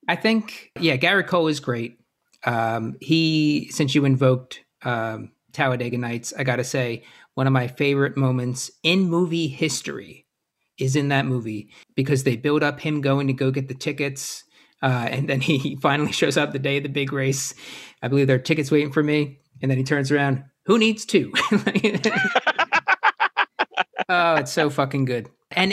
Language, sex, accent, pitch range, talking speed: English, male, American, 130-155 Hz, 180 wpm